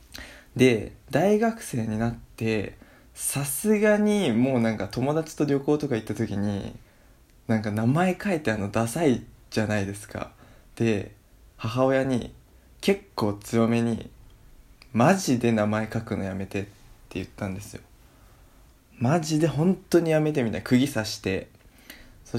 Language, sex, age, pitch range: Japanese, male, 20-39, 105-135 Hz